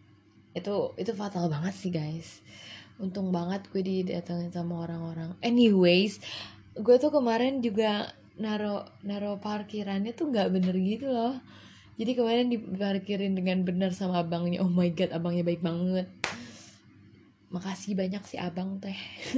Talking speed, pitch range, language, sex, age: 140 wpm, 170-200 Hz, Indonesian, female, 20-39